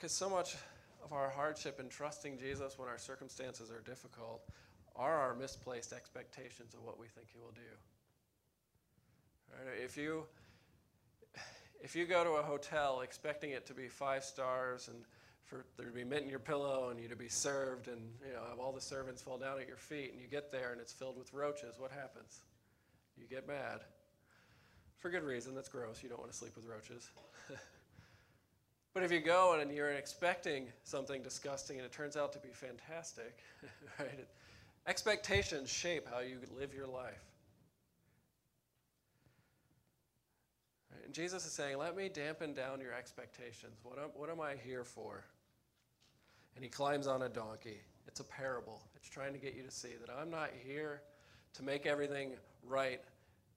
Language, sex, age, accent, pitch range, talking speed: English, male, 40-59, American, 120-145 Hz, 175 wpm